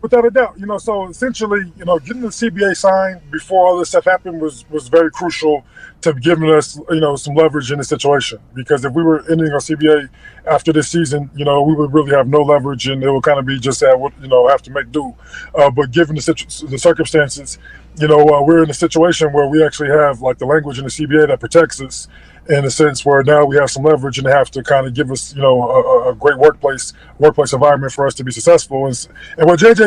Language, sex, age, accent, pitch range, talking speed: English, male, 20-39, American, 140-165 Hz, 250 wpm